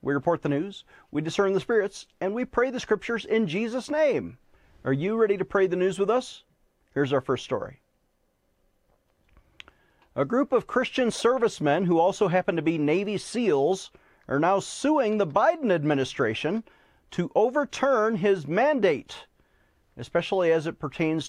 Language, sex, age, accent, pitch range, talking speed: English, male, 40-59, American, 160-225 Hz, 155 wpm